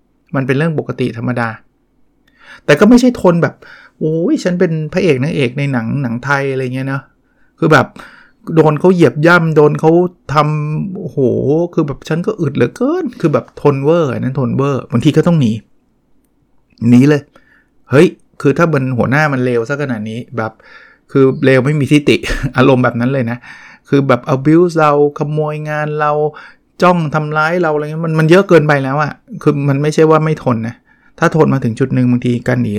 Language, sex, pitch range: Thai, male, 130-160 Hz